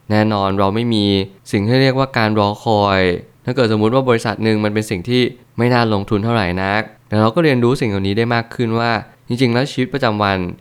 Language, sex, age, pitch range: Thai, male, 20-39, 100-120 Hz